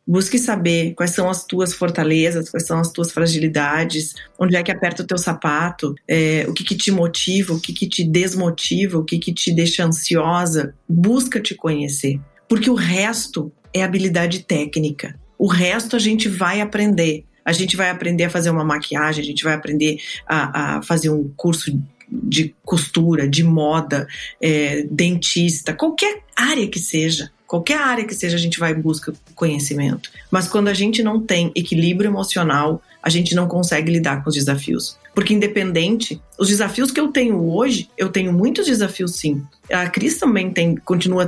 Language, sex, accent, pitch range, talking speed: Portuguese, female, Brazilian, 165-240 Hz, 170 wpm